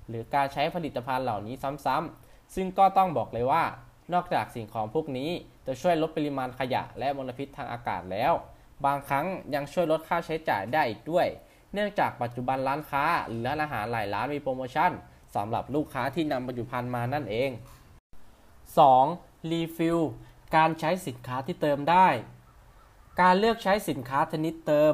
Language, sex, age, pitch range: Thai, male, 20-39, 125-165 Hz